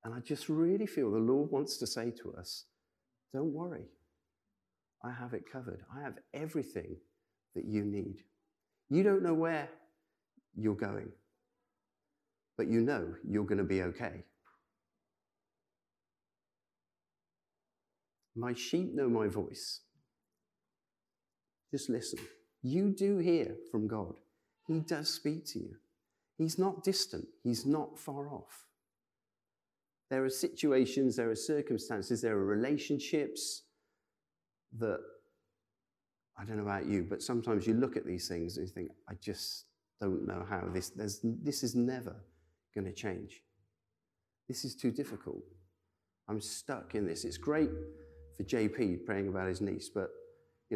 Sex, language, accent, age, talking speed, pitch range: male, English, British, 50-69, 140 wpm, 100-150 Hz